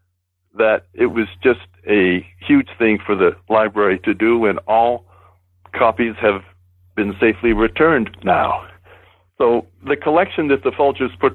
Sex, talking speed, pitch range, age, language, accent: male, 145 wpm, 90-115 Hz, 60-79, English, American